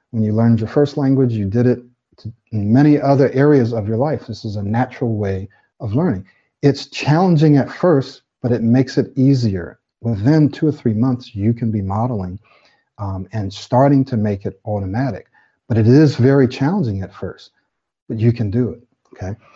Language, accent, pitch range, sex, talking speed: English, American, 105-135 Hz, male, 185 wpm